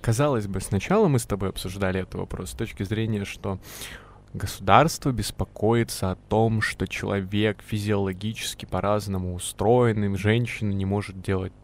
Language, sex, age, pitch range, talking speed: Russian, male, 20-39, 95-120 Hz, 135 wpm